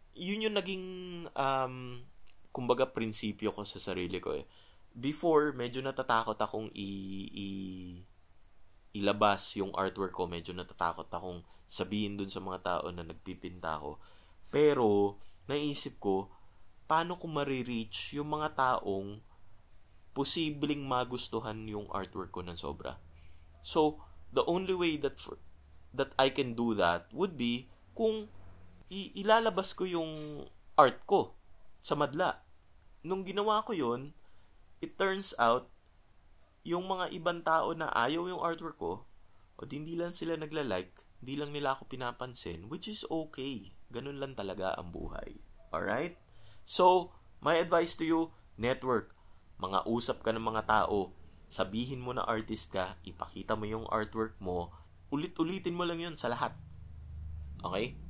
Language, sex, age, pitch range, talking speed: Filipino, male, 20-39, 90-150 Hz, 140 wpm